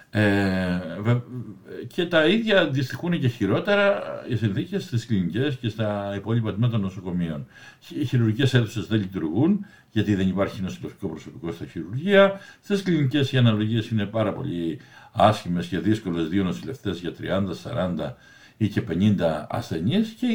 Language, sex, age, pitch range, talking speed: Greek, male, 60-79, 100-140 Hz, 140 wpm